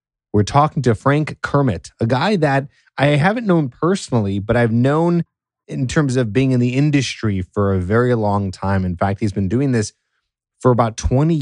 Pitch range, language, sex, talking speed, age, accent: 105-135 Hz, English, male, 190 wpm, 30-49, American